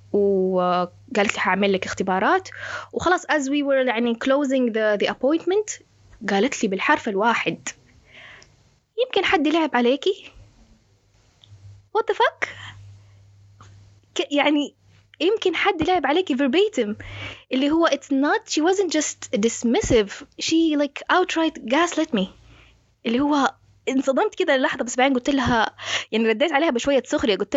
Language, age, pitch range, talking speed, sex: English, 20-39, 205-295 Hz, 125 wpm, female